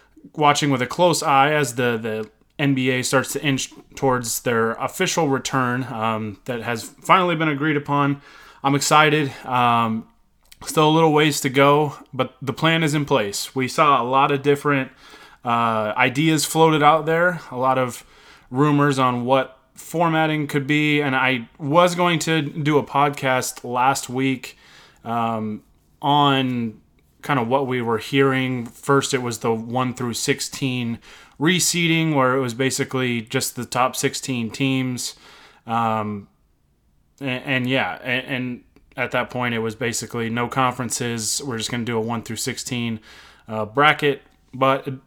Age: 20-39